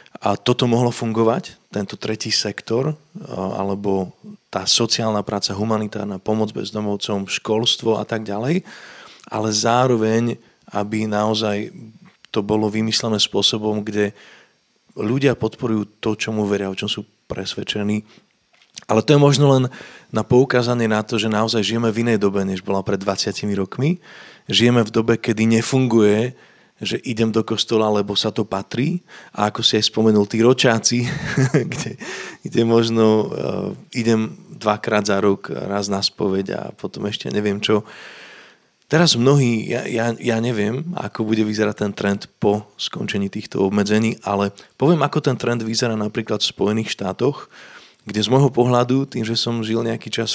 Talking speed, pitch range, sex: 150 wpm, 105-120 Hz, male